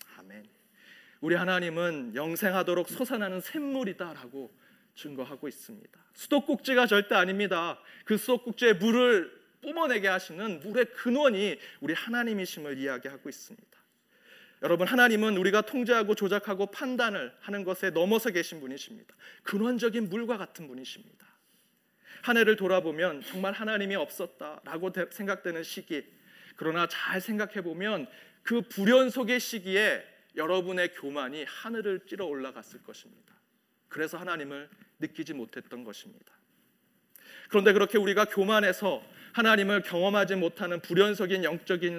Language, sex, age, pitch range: Korean, male, 40-59, 185-235 Hz